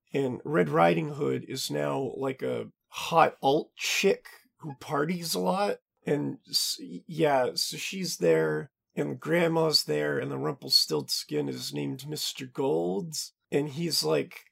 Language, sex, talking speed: English, male, 135 wpm